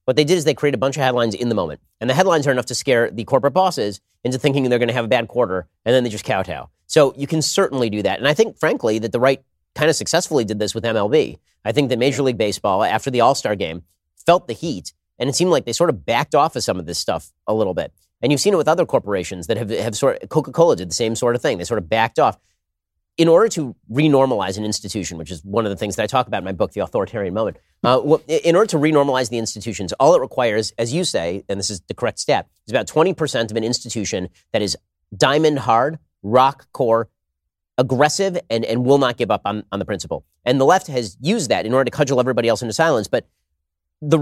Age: 30-49